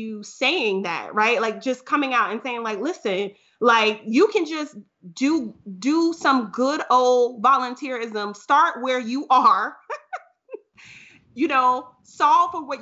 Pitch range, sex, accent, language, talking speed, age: 215-285 Hz, female, American, English, 145 wpm, 30-49